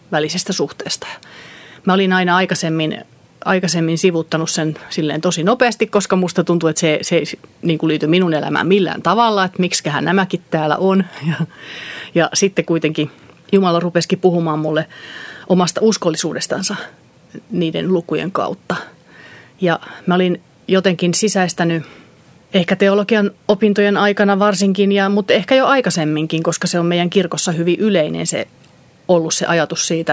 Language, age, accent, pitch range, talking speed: Finnish, 30-49, native, 160-190 Hz, 135 wpm